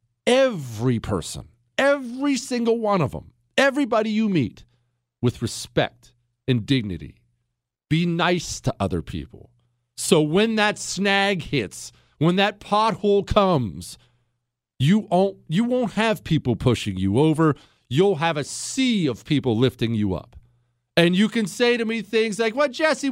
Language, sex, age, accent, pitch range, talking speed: English, male, 40-59, American, 120-195 Hz, 150 wpm